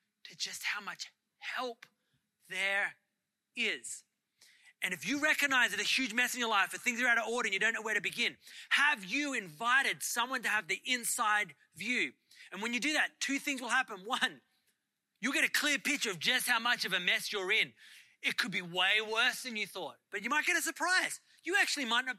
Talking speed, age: 220 wpm, 30-49